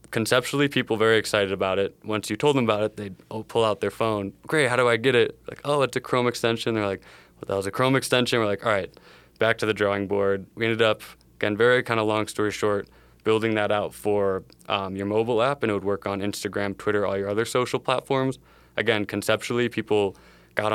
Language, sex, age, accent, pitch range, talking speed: English, male, 20-39, American, 100-115 Hz, 235 wpm